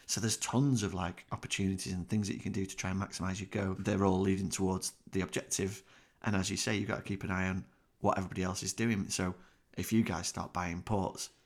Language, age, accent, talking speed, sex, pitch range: English, 30-49, British, 245 wpm, male, 95-115 Hz